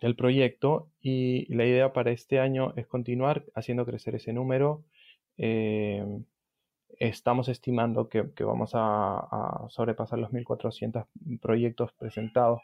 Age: 20-39